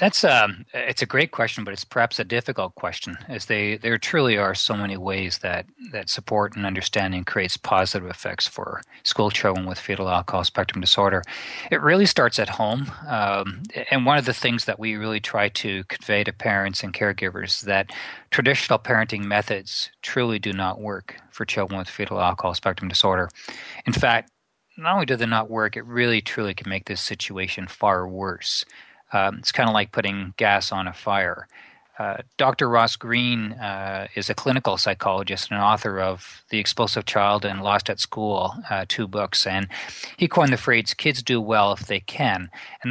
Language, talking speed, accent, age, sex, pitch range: English, 185 wpm, American, 40-59, male, 100-120 Hz